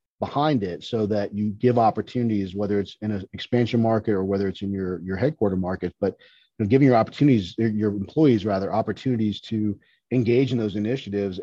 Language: English